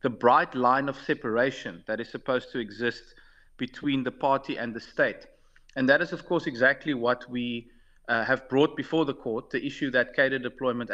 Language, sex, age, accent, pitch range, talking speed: English, male, 40-59, South African, 120-150 Hz, 190 wpm